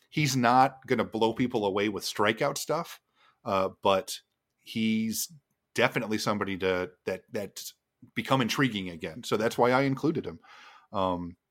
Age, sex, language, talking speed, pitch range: 30-49, male, English, 145 wpm, 95-120 Hz